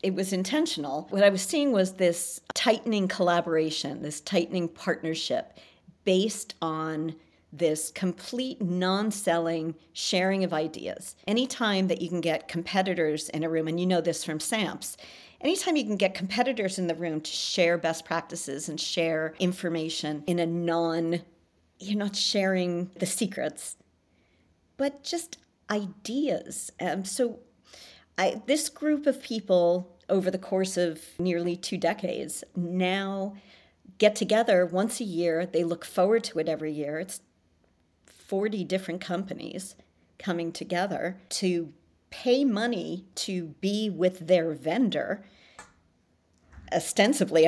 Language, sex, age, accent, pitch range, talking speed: English, female, 50-69, American, 165-210 Hz, 130 wpm